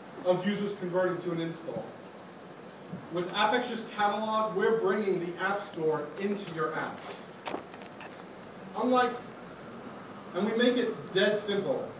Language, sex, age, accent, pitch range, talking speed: English, male, 40-59, American, 175-210 Hz, 120 wpm